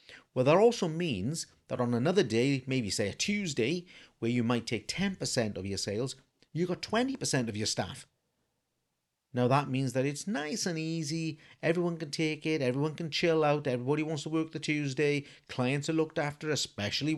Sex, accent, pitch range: male, British, 115-160 Hz